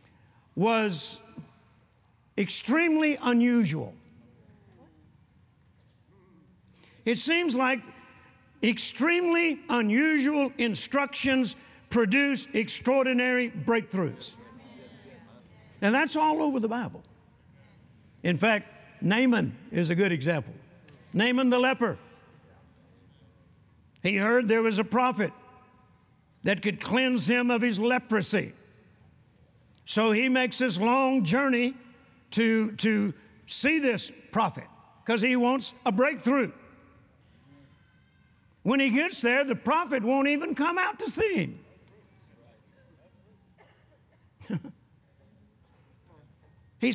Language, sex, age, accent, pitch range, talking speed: English, male, 50-69, American, 215-280 Hz, 90 wpm